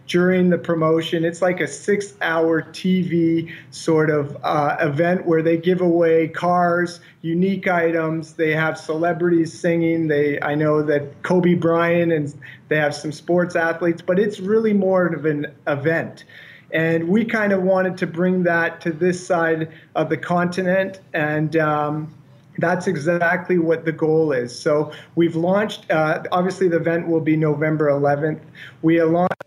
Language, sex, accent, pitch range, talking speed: English, male, American, 155-180 Hz, 160 wpm